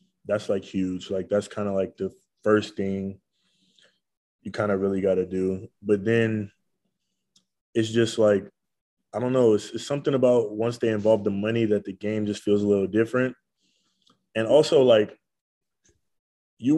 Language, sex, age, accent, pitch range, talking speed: English, male, 20-39, American, 100-120 Hz, 170 wpm